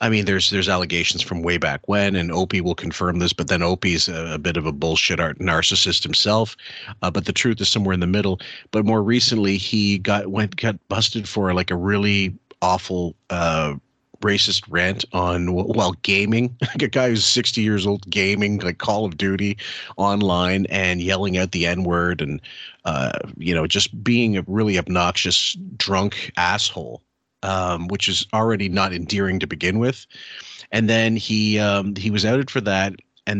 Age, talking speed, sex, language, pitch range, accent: 40-59, 185 wpm, male, English, 90-105 Hz, American